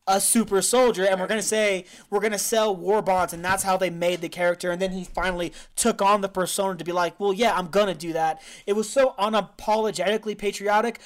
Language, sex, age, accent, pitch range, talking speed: English, male, 20-39, American, 170-215 Hz, 240 wpm